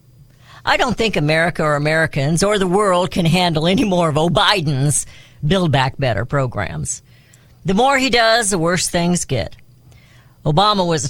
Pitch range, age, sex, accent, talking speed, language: 135-190 Hz, 50-69, female, American, 160 wpm, English